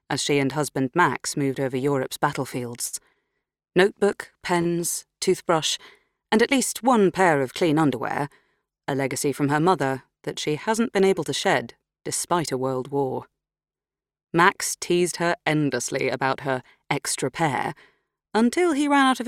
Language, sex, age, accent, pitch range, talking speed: English, female, 30-49, British, 140-180 Hz, 155 wpm